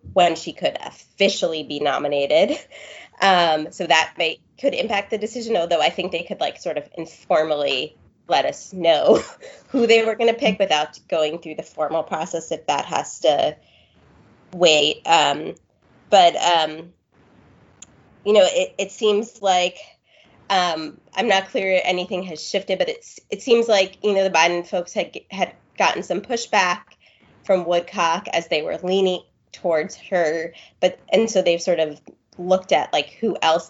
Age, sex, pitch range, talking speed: 20-39, female, 160-205 Hz, 160 wpm